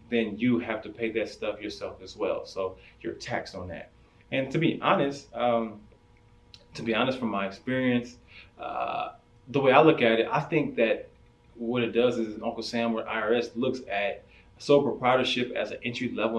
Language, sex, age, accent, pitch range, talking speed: English, male, 20-39, American, 110-130 Hz, 190 wpm